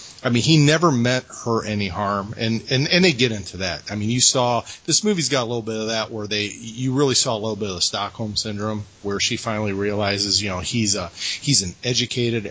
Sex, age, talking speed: male, 30-49, 240 wpm